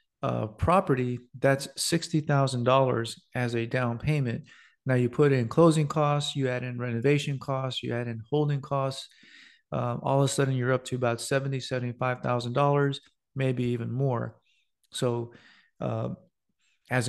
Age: 40-59